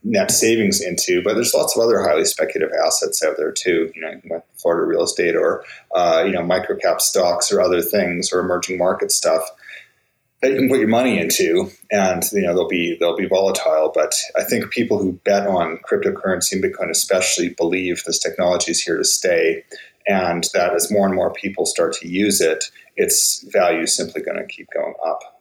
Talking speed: 205 wpm